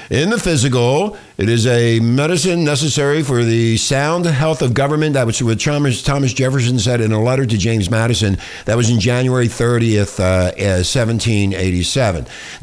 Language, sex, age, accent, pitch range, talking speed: English, male, 50-69, American, 125-180 Hz, 155 wpm